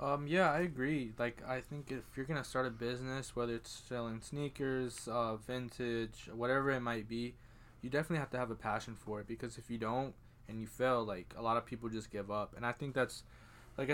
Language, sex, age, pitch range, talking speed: English, male, 20-39, 115-135 Hz, 225 wpm